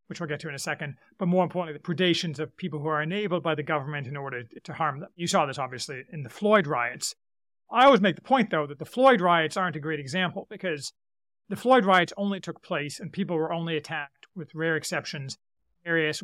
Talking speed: 235 wpm